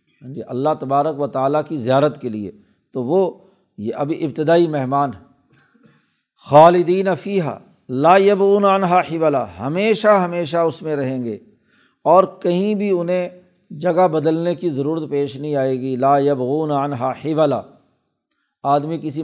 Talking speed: 140 wpm